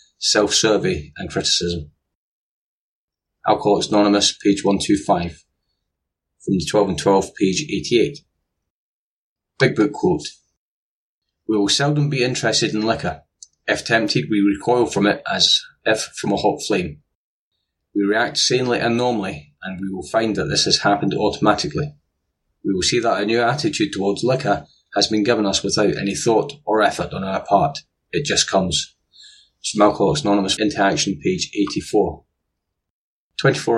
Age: 30-49